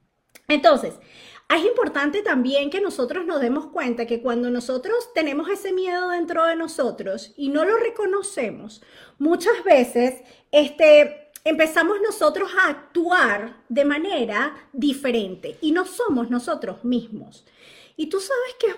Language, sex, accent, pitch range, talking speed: Spanish, female, American, 250-340 Hz, 130 wpm